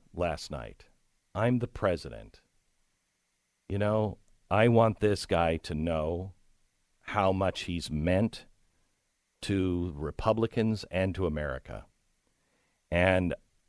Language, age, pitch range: English, 50-69, 90-115 Hz